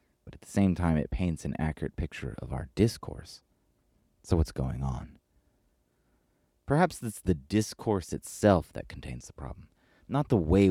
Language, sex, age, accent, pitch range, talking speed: English, male, 30-49, American, 75-100 Hz, 160 wpm